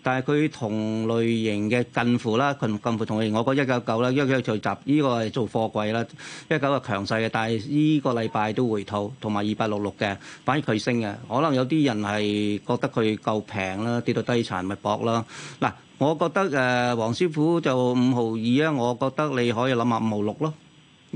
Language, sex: Chinese, male